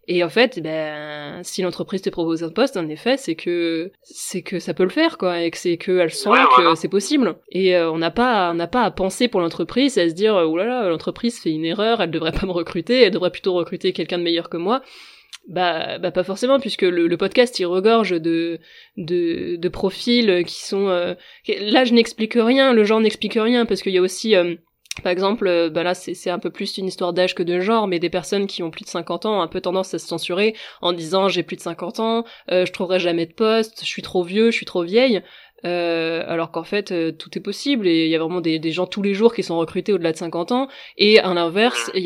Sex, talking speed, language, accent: female, 255 wpm, French, French